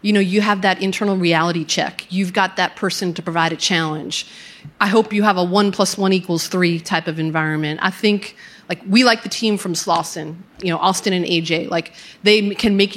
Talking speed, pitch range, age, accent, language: 220 wpm, 175-210 Hz, 30-49, American, English